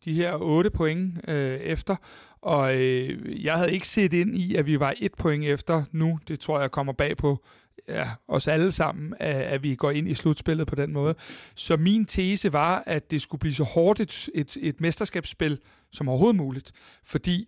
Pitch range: 145-175 Hz